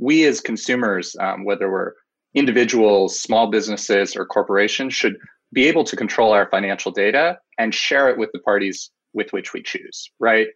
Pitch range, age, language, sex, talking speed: 105-140 Hz, 20-39, English, male, 170 wpm